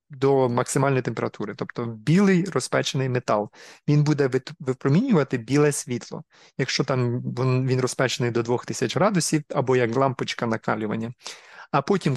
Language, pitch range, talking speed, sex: Ukrainian, 130-155 Hz, 125 wpm, male